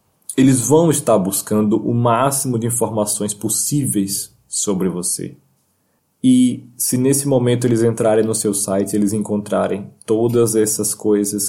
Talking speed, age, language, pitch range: 130 wpm, 20-39, Portuguese, 105-130 Hz